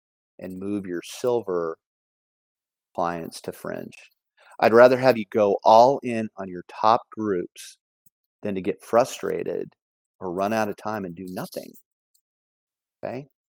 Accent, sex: American, male